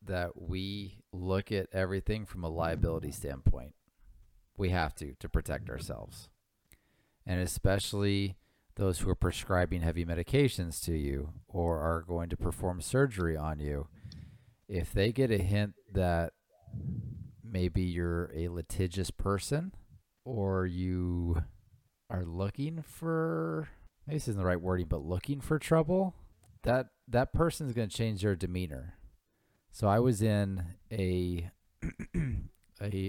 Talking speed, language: 130 wpm, English